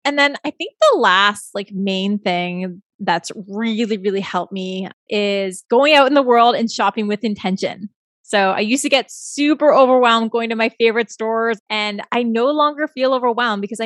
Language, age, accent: English, 20-39, American